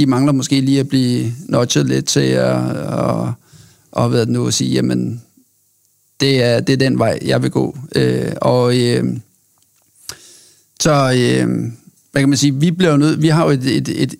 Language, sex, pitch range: Danish, male, 120-145 Hz